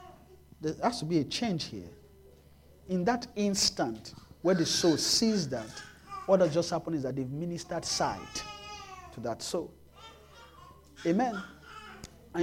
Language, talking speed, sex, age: English, 140 wpm, male, 50-69